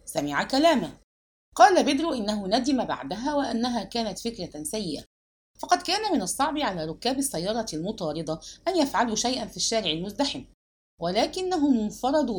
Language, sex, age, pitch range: English, female, 50-69, 175-275 Hz